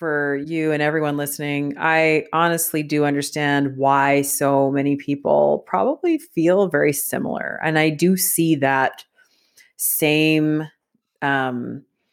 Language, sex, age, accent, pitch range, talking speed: English, female, 30-49, American, 140-170 Hz, 120 wpm